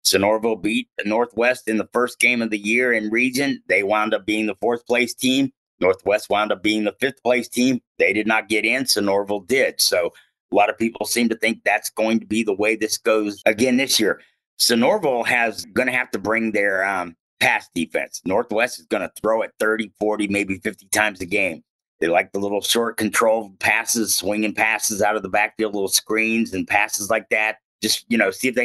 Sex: male